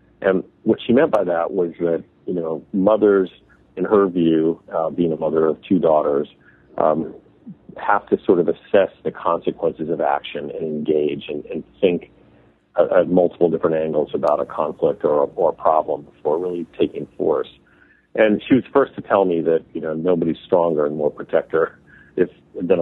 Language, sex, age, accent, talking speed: English, male, 50-69, American, 185 wpm